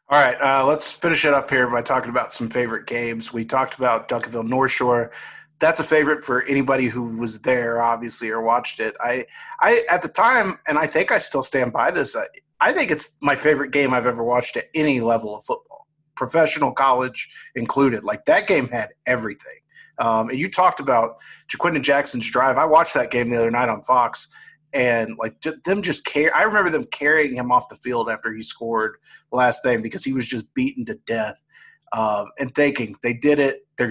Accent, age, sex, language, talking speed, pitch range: American, 30-49, male, English, 205 wpm, 120-155 Hz